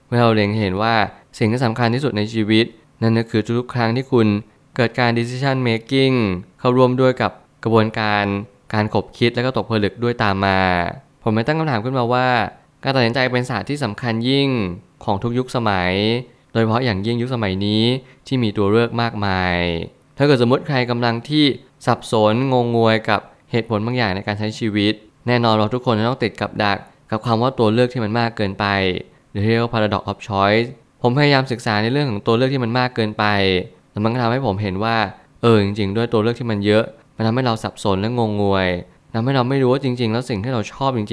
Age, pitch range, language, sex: 20-39, 105-125 Hz, Thai, male